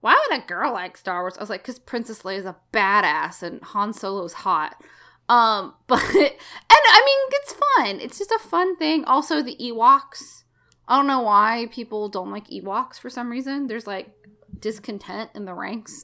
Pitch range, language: 215-280 Hz, English